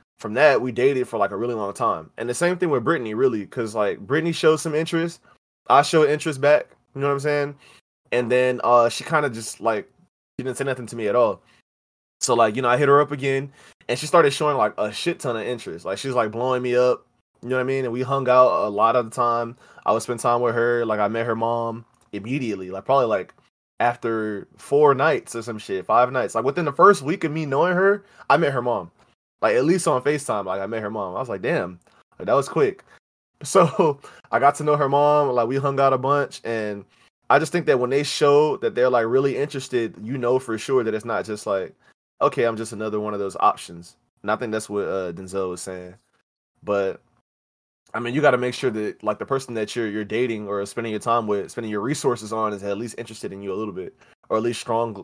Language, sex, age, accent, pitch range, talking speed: English, male, 20-39, American, 110-145 Hz, 250 wpm